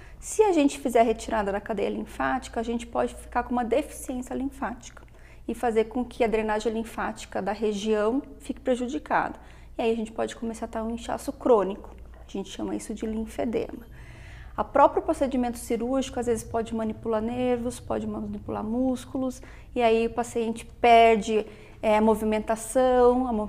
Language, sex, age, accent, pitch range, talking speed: Portuguese, female, 30-49, Brazilian, 215-245 Hz, 165 wpm